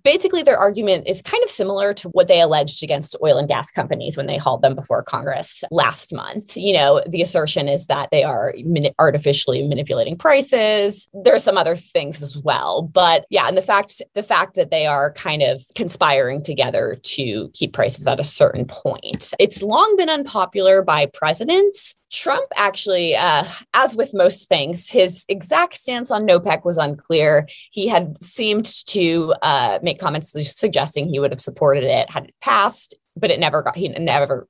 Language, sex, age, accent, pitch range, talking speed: English, female, 20-39, American, 155-230 Hz, 180 wpm